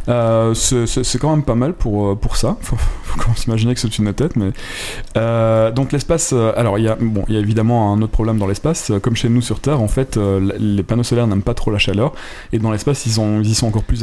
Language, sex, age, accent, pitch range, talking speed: French, male, 20-39, French, 105-125 Hz, 265 wpm